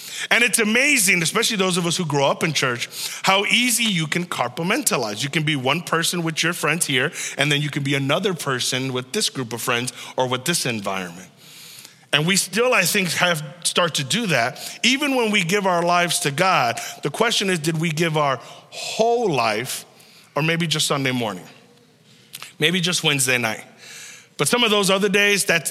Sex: male